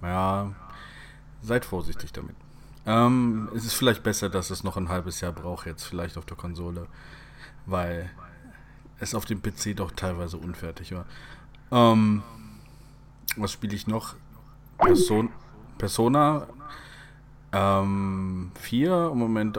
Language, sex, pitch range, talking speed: German, male, 95-135 Hz, 125 wpm